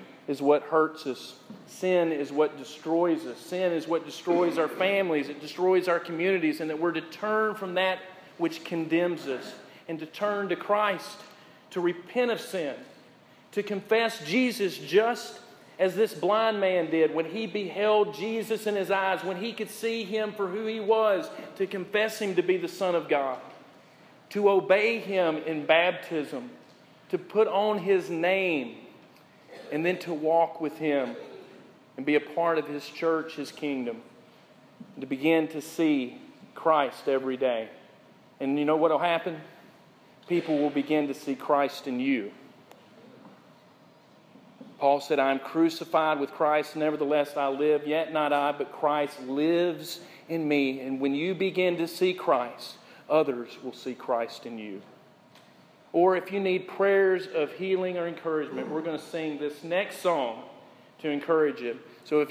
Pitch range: 150-195 Hz